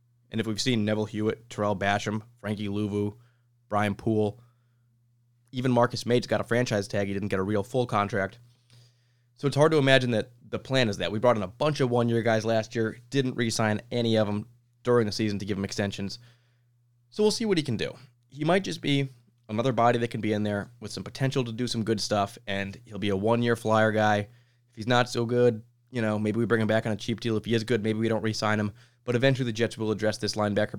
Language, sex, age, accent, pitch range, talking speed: English, male, 20-39, American, 105-120 Hz, 240 wpm